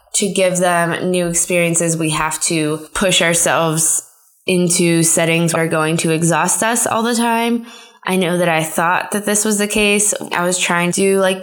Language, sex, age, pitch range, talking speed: English, female, 20-39, 170-200 Hz, 195 wpm